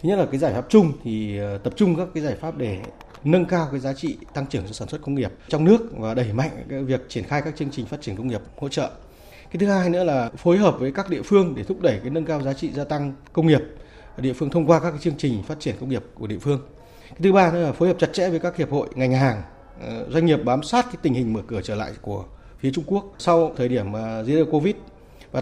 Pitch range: 125-165 Hz